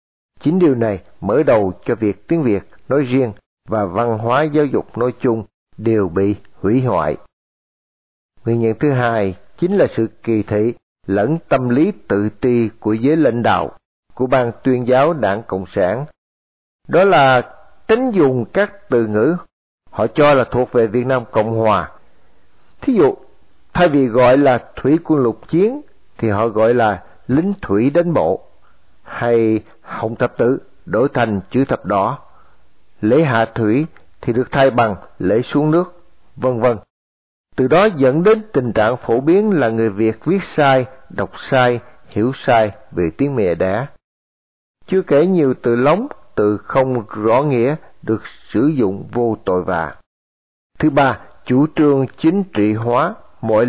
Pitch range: 105-140 Hz